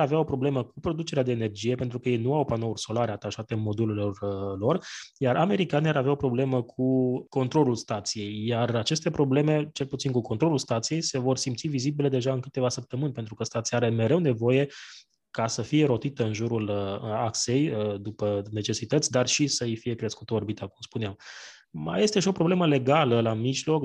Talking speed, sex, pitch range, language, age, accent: 190 wpm, male, 115-145 Hz, Romanian, 20-39, native